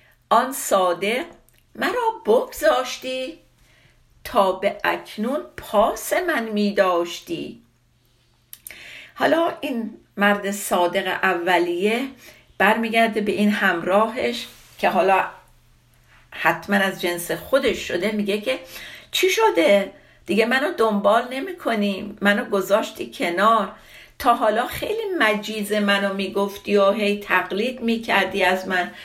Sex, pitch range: female, 180-240 Hz